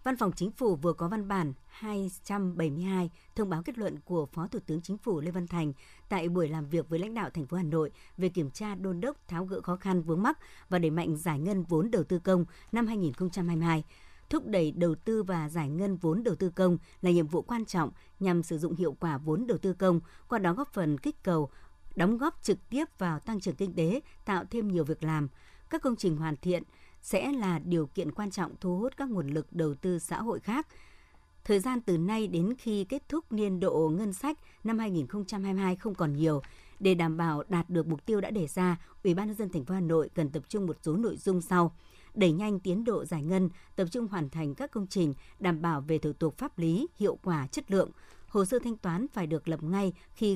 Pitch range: 165-205 Hz